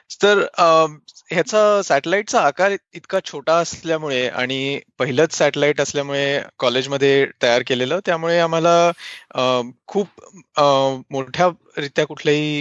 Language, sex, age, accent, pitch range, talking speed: Marathi, male, 20-39, native, 140-175 Hz, 100 wpm